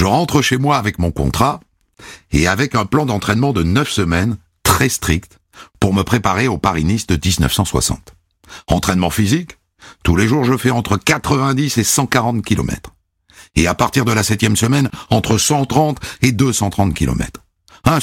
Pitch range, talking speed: 90-130 Hz, 165 wpm